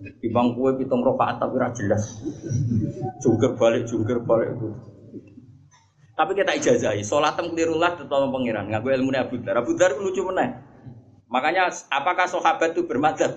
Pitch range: 115-145 Hz